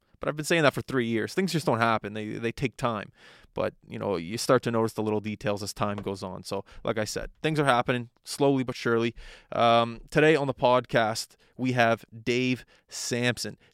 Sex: male